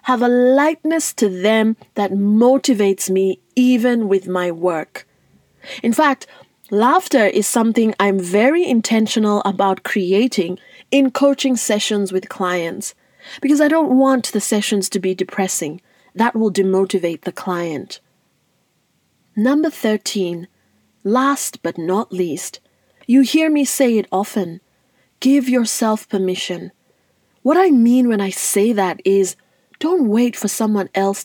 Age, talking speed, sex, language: 30-49, 135 wpm, female, English